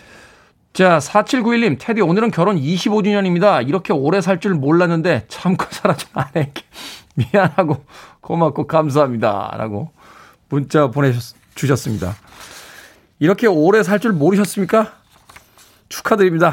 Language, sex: Korean, male